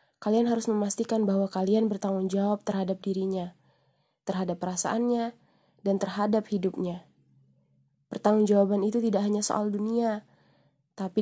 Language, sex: Indonesian, female